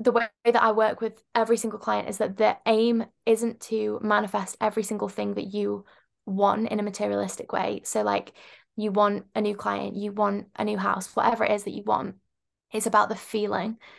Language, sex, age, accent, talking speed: English, female, 10-29, British, 205 wpm